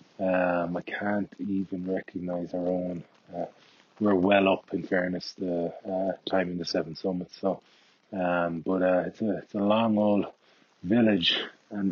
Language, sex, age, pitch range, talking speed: English, male, 20-39, 85-100 Hz, 155 wpm